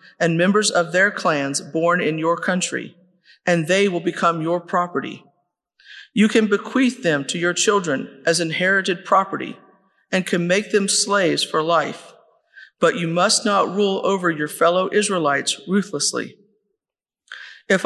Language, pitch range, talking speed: English, 170-205 Hz, 145 wpm